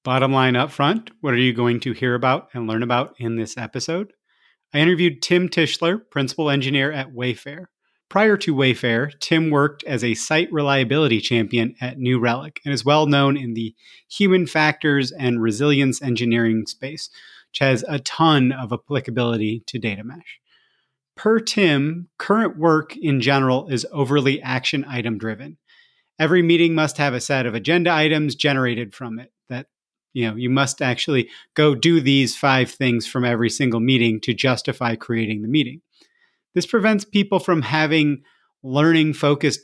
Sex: male